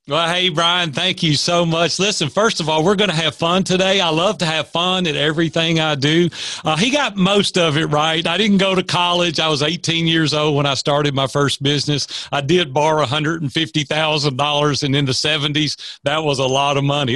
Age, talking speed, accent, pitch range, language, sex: 40-59, 225 wpm, American, 145-175 Hz, English, male